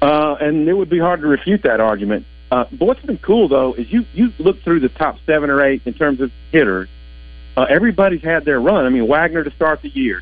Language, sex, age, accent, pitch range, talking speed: English, male, 50-69, American, 105-155 Hz, 245 wpm